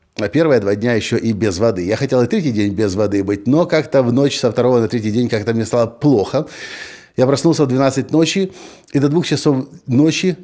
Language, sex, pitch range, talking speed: Russian, male, 105-150 Hz, 225 wpm